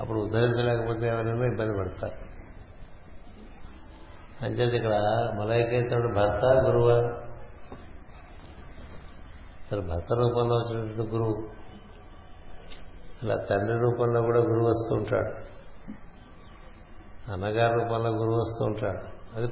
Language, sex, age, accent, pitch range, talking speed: Telugu, male, 60-79, native, 90-115 Hz, 85 wpm